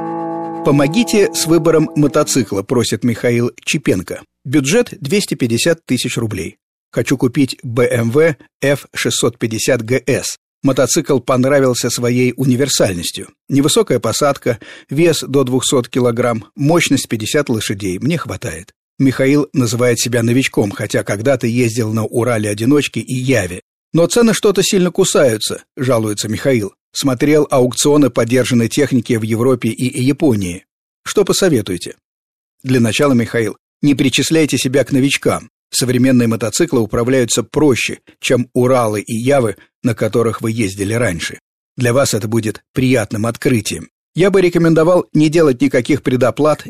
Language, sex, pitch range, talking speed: Russian, male, 115-145 Hz, 120 wpm